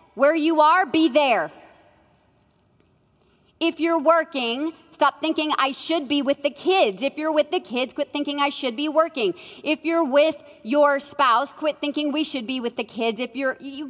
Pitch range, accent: 255-325 Hz, American